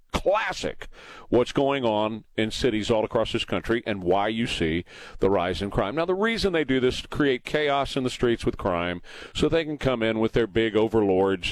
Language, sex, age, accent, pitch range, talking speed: English, male, 40-59, American, 105-140 Hz, 220 wpm